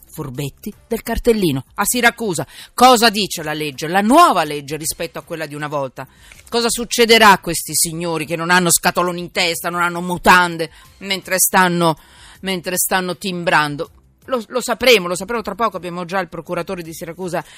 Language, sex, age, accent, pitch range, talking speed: Italian, female, 40-59, native, 155-195 Hz, 170 wpm